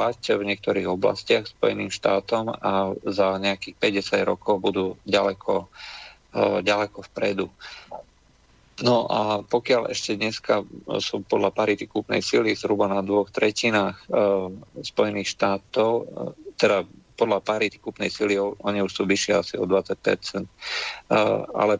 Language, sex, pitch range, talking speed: Slovak, male, 100-110 Hz, 120 wpm